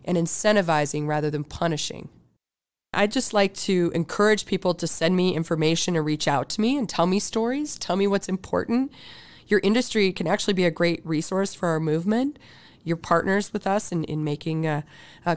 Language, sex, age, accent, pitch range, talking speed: English, female, 30-49, American, 155-195 Hz, 190 wpm